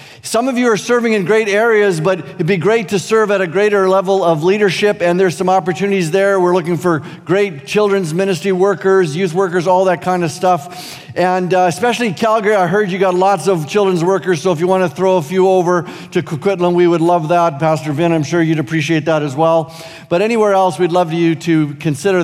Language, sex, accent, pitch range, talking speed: English, male, American, 170-205 Hz, 220 wpm